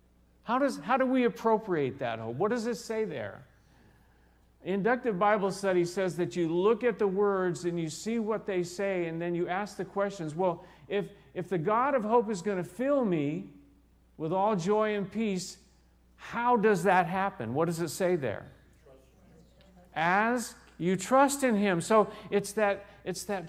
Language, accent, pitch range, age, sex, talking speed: English, American, 175-235 Hz, 50-69, male, 180 wpm